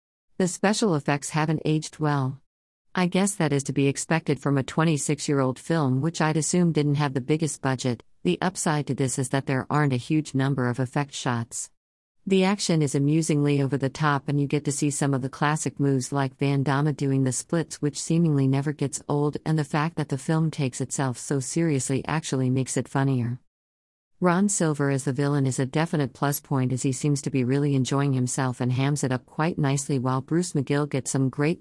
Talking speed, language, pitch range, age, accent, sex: 210 wpm, English, 130-155 Hz, 50-69, American, female